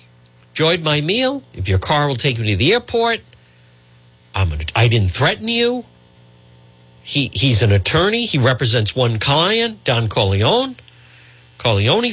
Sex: male